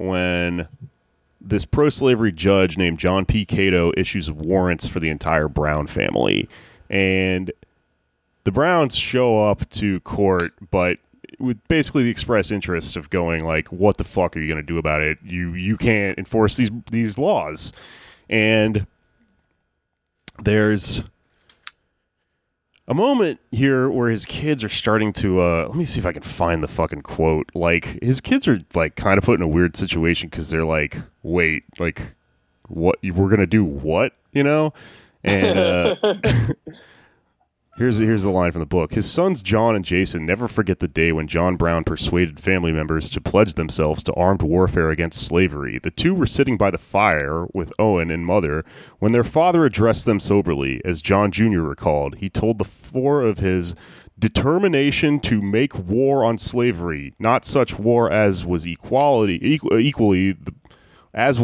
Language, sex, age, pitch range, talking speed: English, male, 30-49, 85-115 Hz, 165 wpm